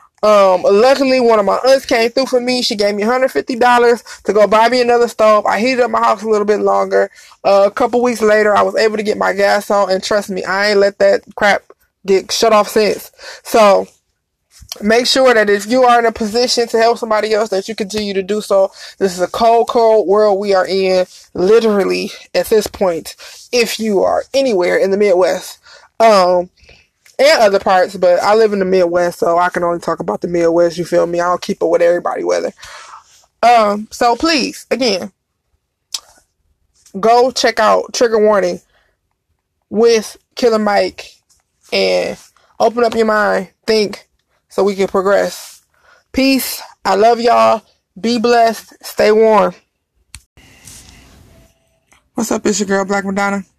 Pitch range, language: 190-235 Hz, English